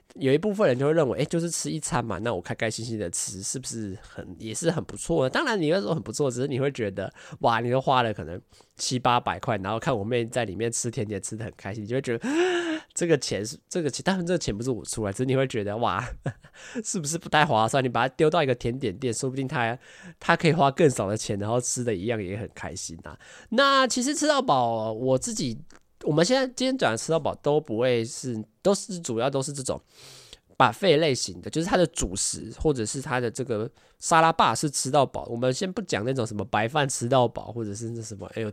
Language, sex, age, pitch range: Chinese, male, 20-39, 115-155 Hz